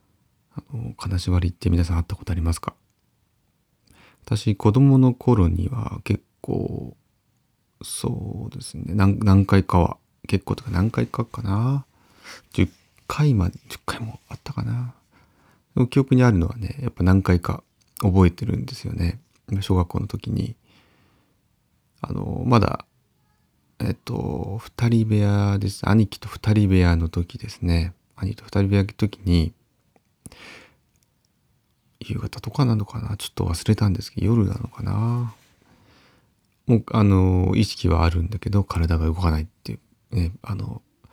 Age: 30-49